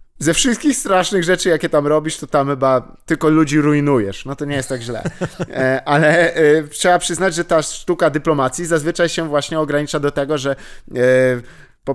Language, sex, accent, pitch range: Polish, male, native, 130-175 Hz